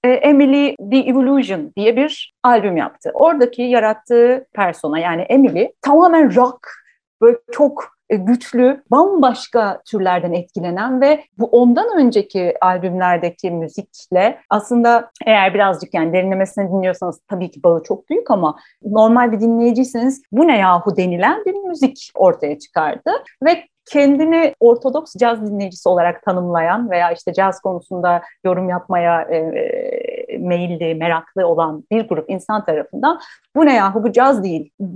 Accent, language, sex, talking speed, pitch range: native, Turkish, female, 130 wpm, 190-275 Hz